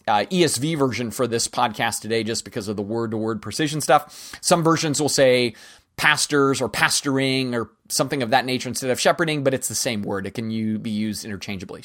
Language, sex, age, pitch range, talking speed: English, male, 30-49, 125-165 Hz, 200 wpm